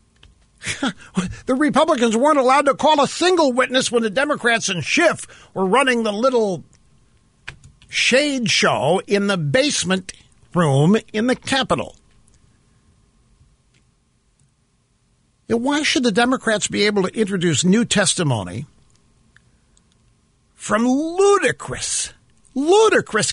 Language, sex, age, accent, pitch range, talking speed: English, male, 50-69, American, 185-280 Hz, 105 wpm